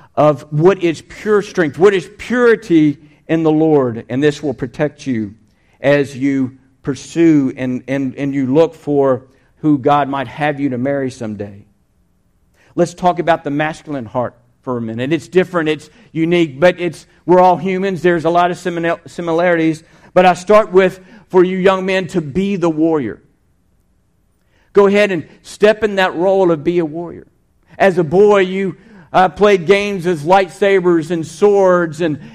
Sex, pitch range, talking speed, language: male, 150-190 Hz, 175 wpm, English